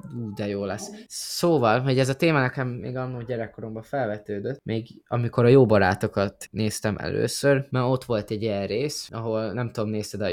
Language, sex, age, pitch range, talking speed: Hungarian, male, 20-39, 110-130 Hz, 175 wpm